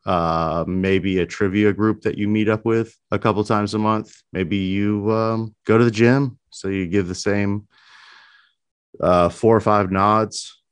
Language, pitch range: English, 90-110 Hz